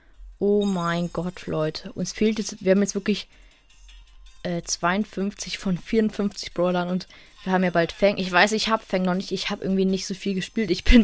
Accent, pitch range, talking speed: German, 170-205 Hz, 205 wpm